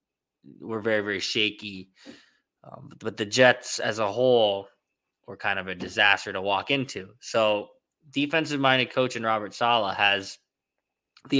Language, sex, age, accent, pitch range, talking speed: English, male, 20-39, American, 105-125 Hz, 145 wpm